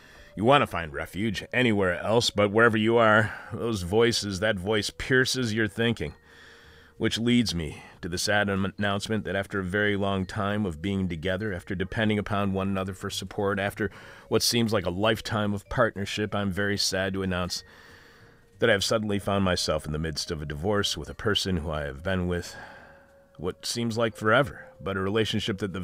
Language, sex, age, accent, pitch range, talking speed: English, male, 40-59, American, 95-110 Hz, 195 wpm